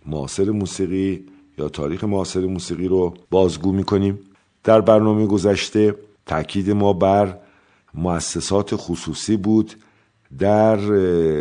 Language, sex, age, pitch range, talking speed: Persian, male, 50-69, 85-105 Hz, 105 wpm